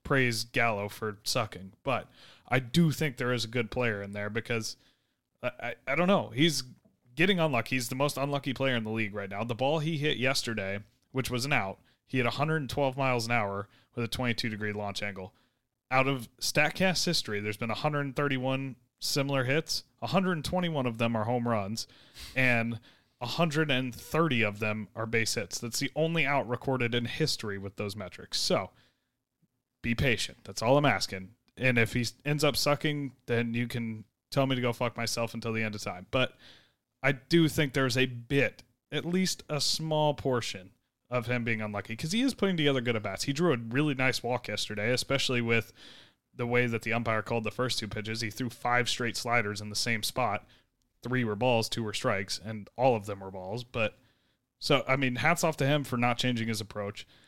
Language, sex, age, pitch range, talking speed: English, male, 30-49, 110-135 Hz, 200 wpm